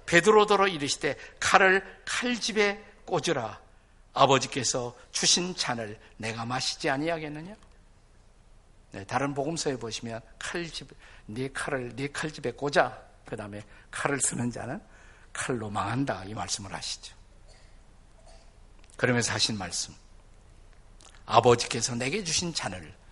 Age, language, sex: 50-69, Korean, male